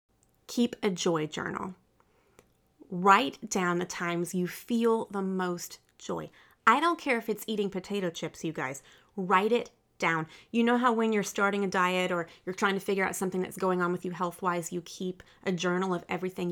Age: 30-49